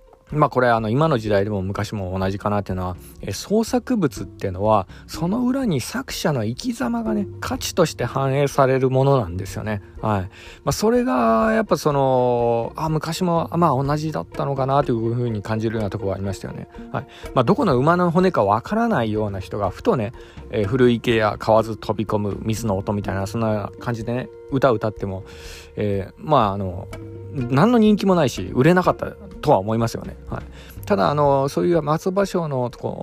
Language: Japanese